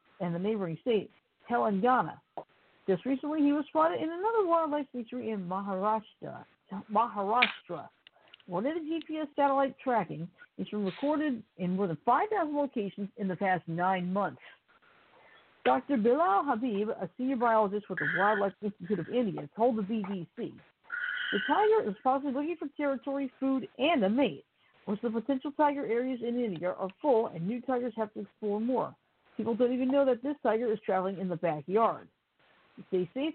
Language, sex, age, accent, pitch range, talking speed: English, female, 50-69, American, 200-280 Hz, 165 wpm